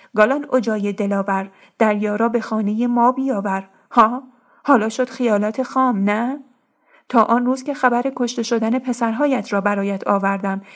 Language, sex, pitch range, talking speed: Persian, female, 210-245 Hz, 140 wpm